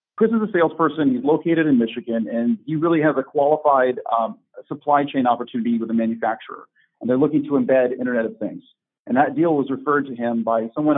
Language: English